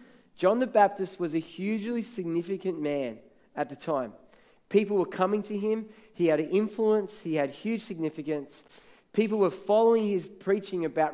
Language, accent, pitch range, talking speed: English, Australian, 160-210 Hz, 160 wpm